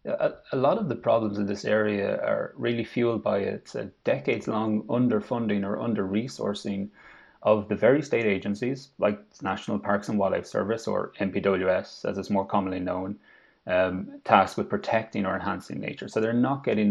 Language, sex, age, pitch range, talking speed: English, male, 30-49, 100-115 Hz, 165 wpm